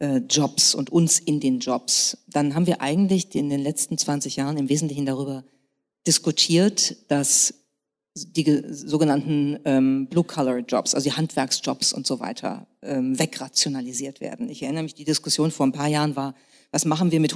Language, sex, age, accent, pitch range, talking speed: German, female, 40-59, German, 140-170 Hz, 165 wpm